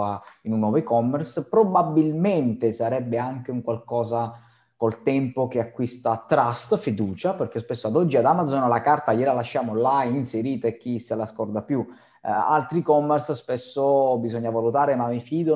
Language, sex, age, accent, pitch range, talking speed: Italian, male, 20-39, native, 110-125 Hz, 160 wpm